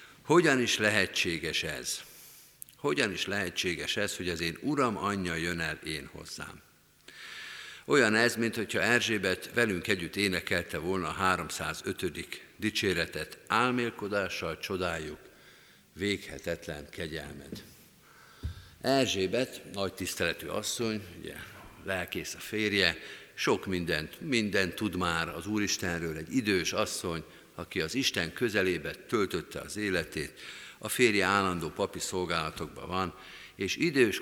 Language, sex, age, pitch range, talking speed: Hungarian, male, 50-69, 90-120 Hz, 115 wpm